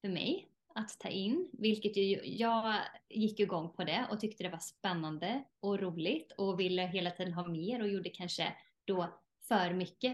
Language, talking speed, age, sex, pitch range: Swedish, 180 wpm, 20-39, female, 190-235 Hz